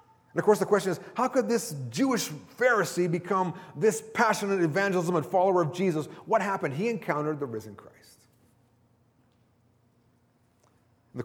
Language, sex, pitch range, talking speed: English, male, 120-195 Hz, 145 wpm